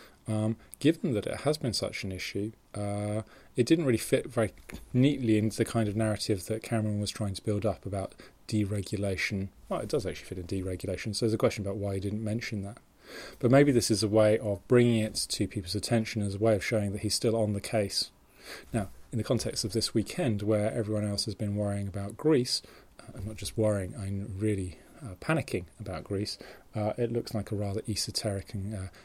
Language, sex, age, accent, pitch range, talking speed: English, male, 30-49, British, 100-115 Hz, 215 wpm